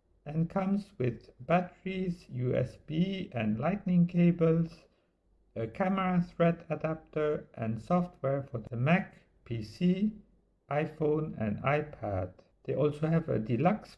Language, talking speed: English, 110 wpm